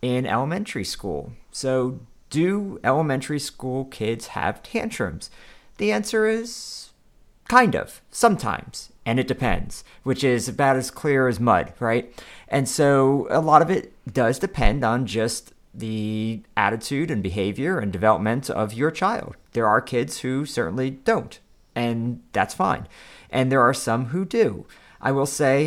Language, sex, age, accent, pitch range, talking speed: English, male, 40-59, American, 110-135 Hz, 150 wpm